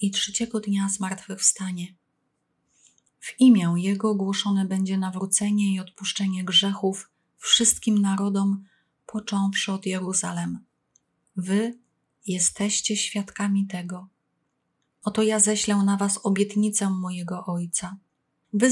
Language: Polish